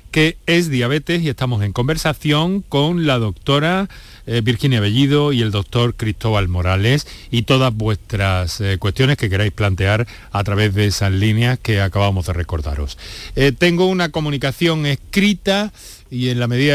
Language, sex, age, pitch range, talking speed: Spanish, male, 40-59, 100-145 Hz, 160 wpm